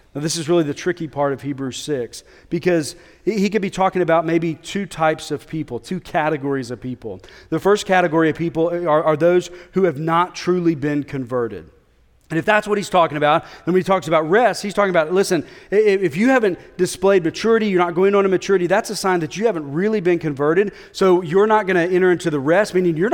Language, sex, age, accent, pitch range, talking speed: English, male, 40-59, American, 155-195 Hz, 225 wpm